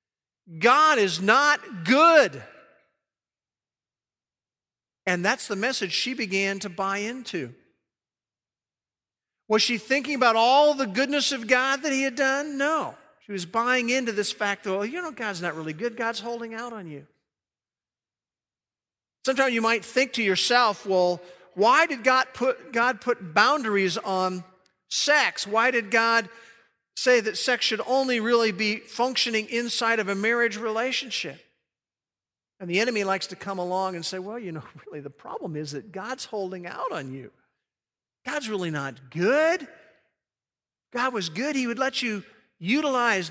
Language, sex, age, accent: English, male, 50-69, American